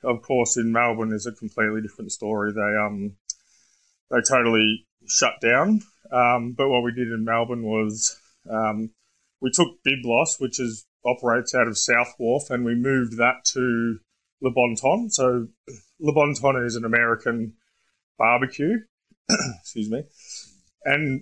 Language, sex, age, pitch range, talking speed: English, male, 20-39, 115-135 Hz, 150 wpm